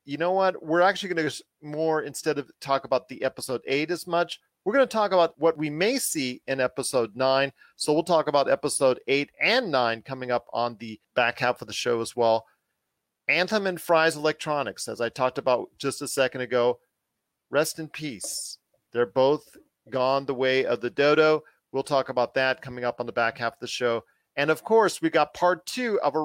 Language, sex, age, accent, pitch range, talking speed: English, male, 40-59, American, 135-180 Hz, 215 wpm